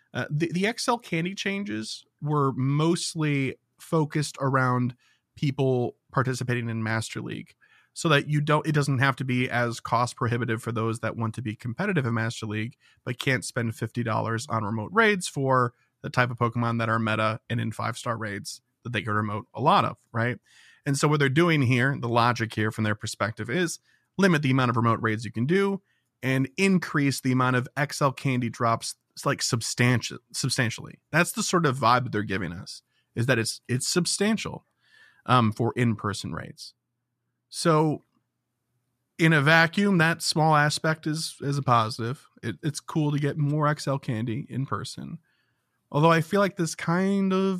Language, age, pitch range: English, 30-49, 115-160 Hz